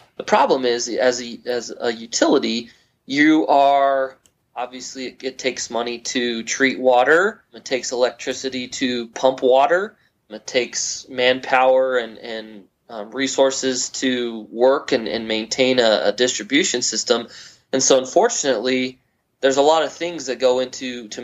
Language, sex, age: English, male, 20-39